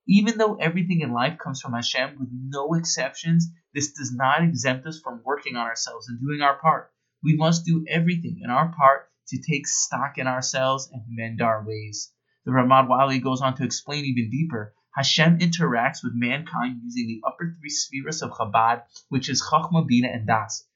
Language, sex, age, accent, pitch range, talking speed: English, male, 30-49, American, 125-165 Hz, 190 wpm